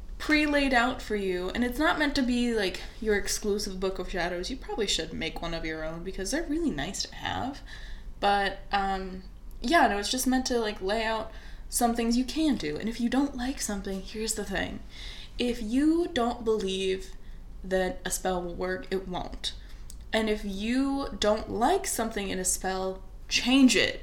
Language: English